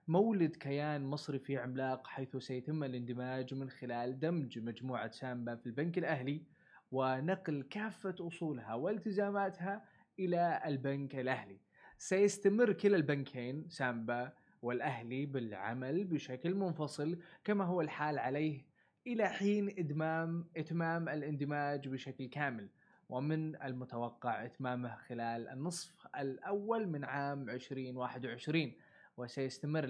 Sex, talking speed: male, 105 wpm